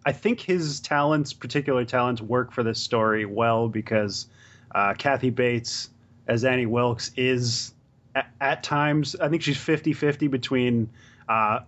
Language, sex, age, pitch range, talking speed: English, male, 30-49, 115-135 Hz, 150 wpm